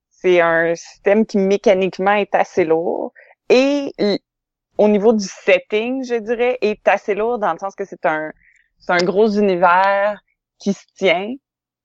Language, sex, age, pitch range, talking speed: French, female, 20-39, 175-215 Hz, 155 wpm